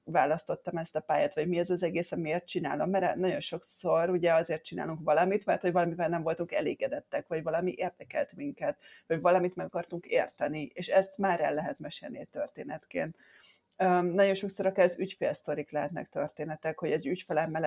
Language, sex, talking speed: Hungarian, female, 175 wpm